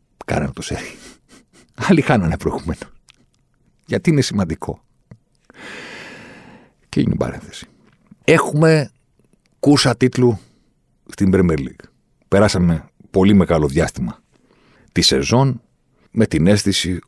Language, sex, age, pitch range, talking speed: Greek, male, 60-79, 70-100 Hz, 90 wpm